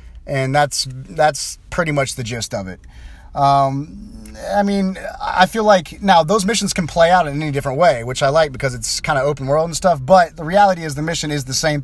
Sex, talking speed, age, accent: male, 230 wpm, 30-49, American